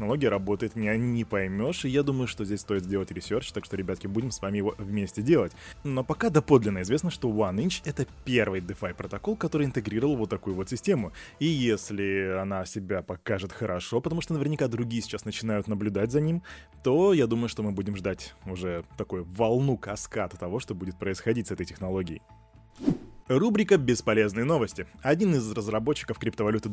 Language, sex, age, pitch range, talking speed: Russian, male, 20-39, 100-135 Hz, 175 wpm